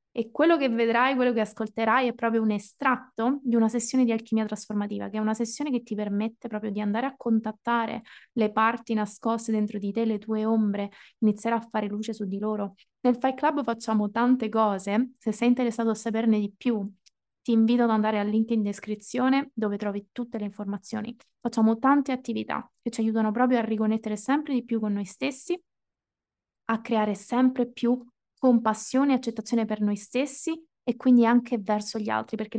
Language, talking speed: Italian, 190 wpm